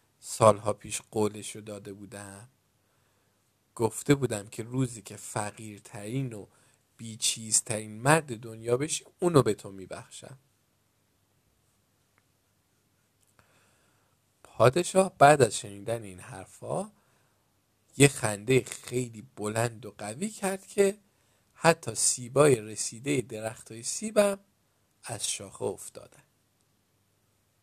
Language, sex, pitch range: Persian, male, 105-130 Hz